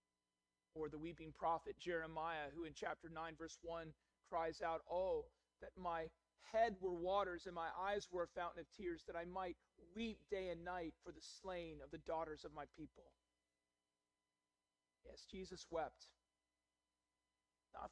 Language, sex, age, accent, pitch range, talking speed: English, male, 40-59, American, 150-195 Hz, 155 wpm